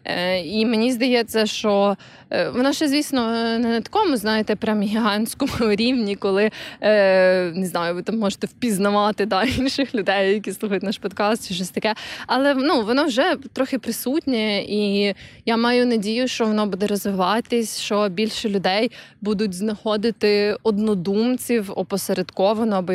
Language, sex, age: Ukrainian, female, 20-39